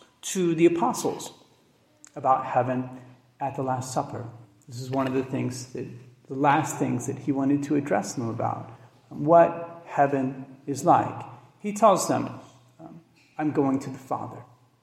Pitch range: 125-165 Hz